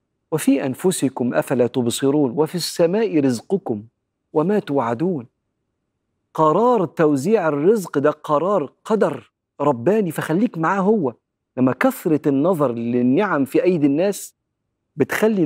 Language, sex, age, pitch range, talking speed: Arabic, male, 40-59, 135-195 Hz, 105 wpm